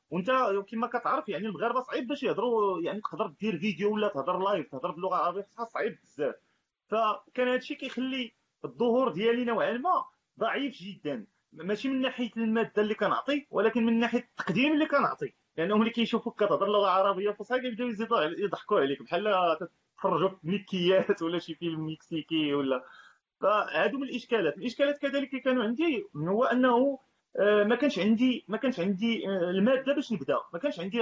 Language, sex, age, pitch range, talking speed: Arabic, male, 30-49, 190-245 Hz, 165 wpm